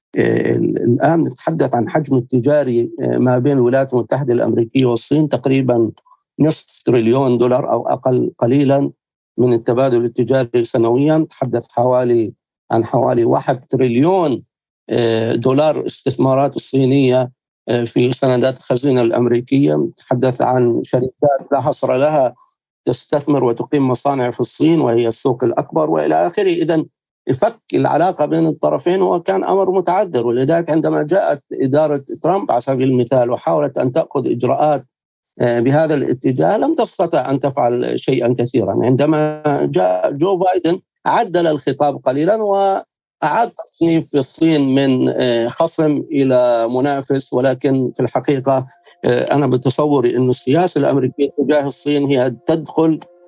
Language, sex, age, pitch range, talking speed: Arabic, male, 50-69, 120-150 Hz, 120 wpm